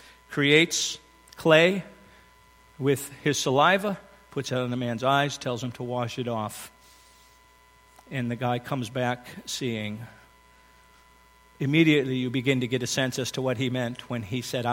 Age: 50-69